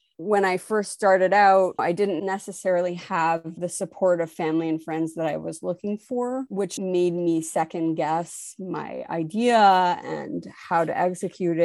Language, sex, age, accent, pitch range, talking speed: English, female, 30-49, American, 170-195 Hz, 160 wpm